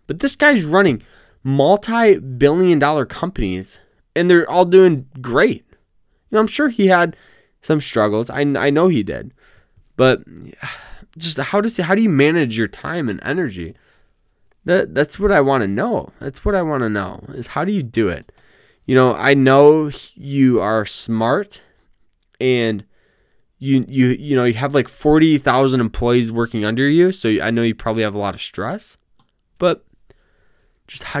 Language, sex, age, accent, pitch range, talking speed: English, male, 20-39, American, 120-185 Hz, 170 wpm